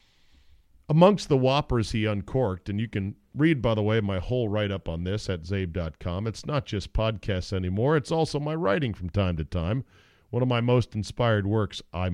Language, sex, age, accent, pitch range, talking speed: English, male, 40-59, American, 95-145 Hz, 195 wpm